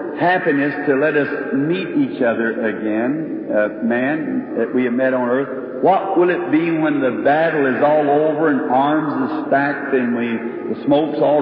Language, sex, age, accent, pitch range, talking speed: English, male, 60-79, American, 140-180 Hz, 185 wpm